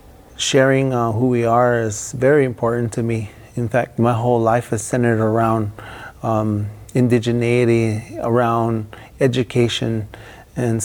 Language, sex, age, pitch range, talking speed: English, male, 30-49, 115-130 Hz, 125 wpm